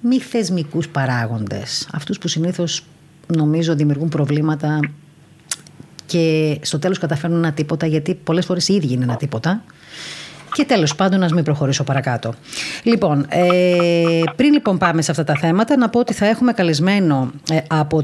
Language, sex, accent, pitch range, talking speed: Greek, female, native, 150-190 Hz, 145 wpm